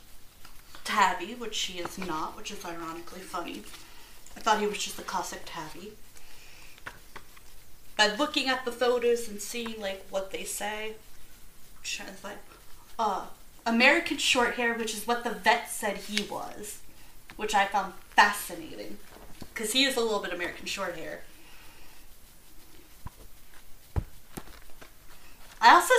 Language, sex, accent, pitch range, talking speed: English, female, American, 210-290 Hz, 130 wpm